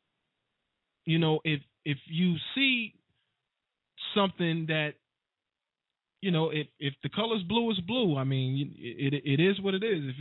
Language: English